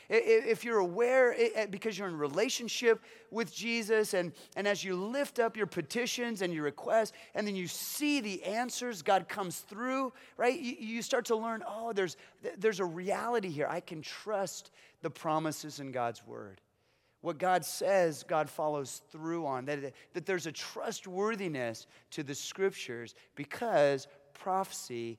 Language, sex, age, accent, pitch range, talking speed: English, male, 30-49, American, 140-205 Hz, 155 wpm